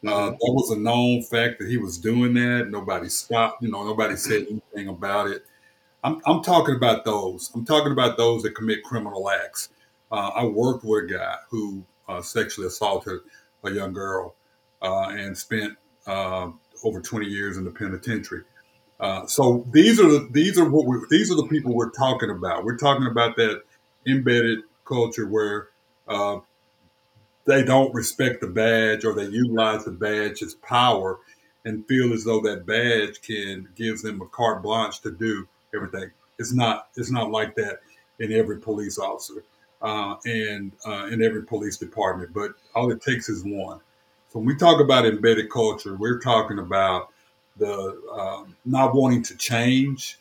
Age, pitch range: 50-69, 105-120 Hz